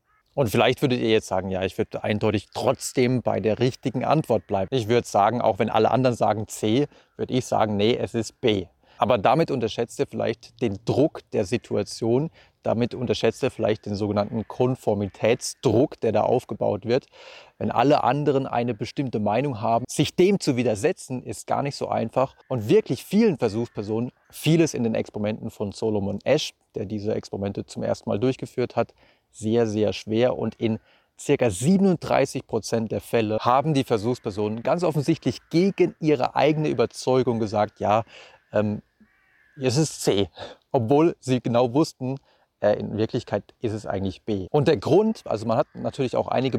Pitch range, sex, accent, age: 110-135 Hz, male, German, 30-49